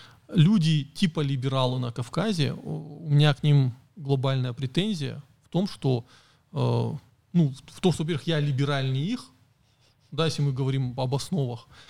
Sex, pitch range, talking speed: male, 130-155 Hz, 140 wpm